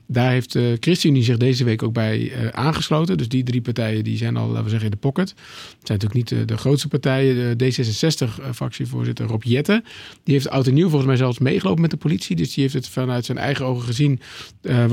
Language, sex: Dutch, male